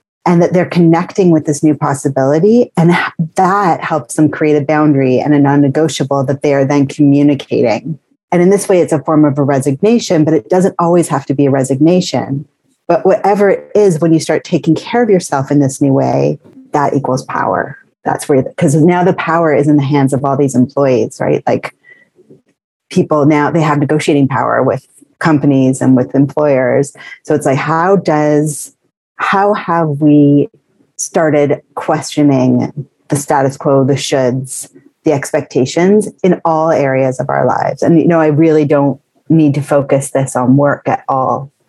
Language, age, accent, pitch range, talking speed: English, 30-49, American, 140-160 Hz, 180 wpm